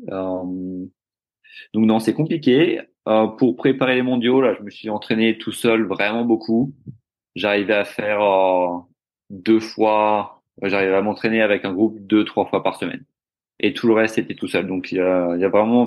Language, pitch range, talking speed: French, 95-115 Hz, 180 wpm